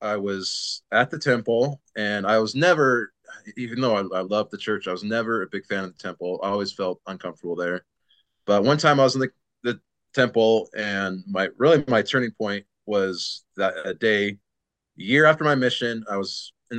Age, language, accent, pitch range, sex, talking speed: 30-49, English, American, 105-130 Hz, male, 200 wpm